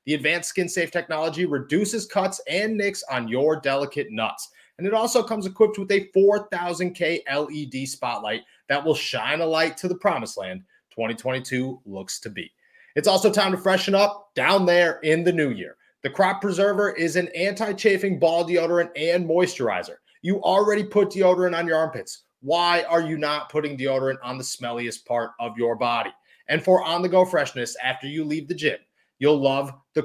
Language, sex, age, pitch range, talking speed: English, male, 30-49, 145-200 Hz, 180 wpm